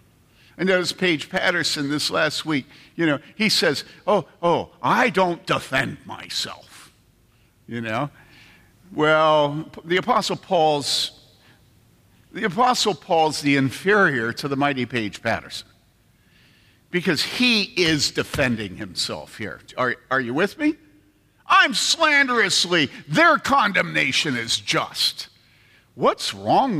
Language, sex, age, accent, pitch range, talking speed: English, male, 50-69, American, 120-185 Hz, 115 wpm